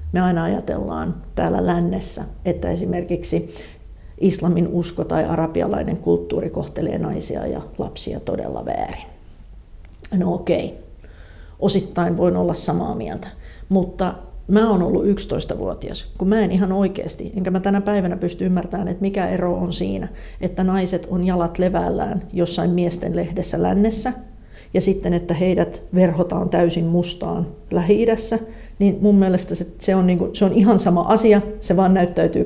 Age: 40-59